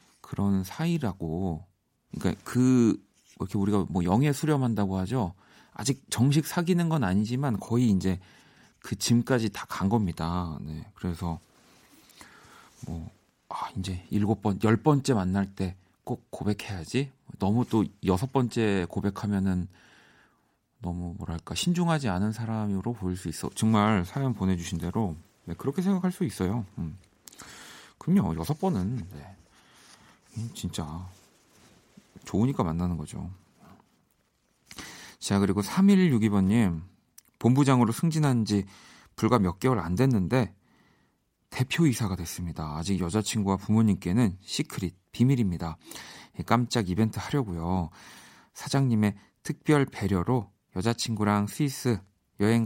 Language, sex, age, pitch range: Korean, male, 40-59, 95-125 Hz